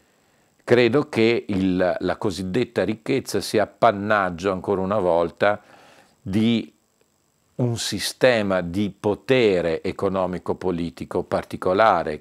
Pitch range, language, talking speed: 90-110 Hz, Italian, 85 wpm